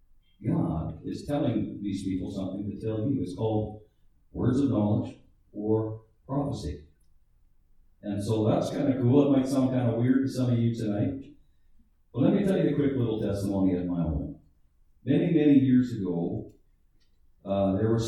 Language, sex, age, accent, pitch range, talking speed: English, male, 50-69, American, 85-130 Hz, 175 wpm